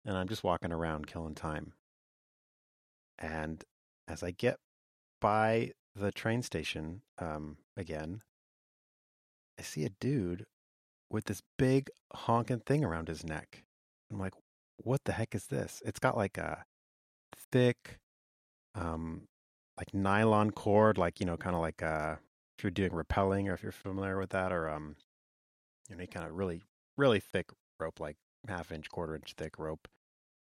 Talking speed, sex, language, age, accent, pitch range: 150 wpm, male, English, 30-49, American, 75-105 Hz